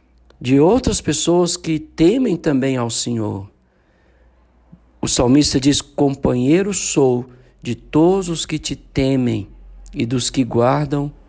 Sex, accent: male, Brazilian